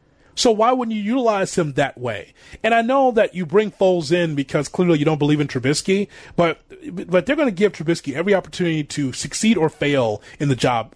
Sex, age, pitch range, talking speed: male, 30-49, 150-200 Hz, 215 wpm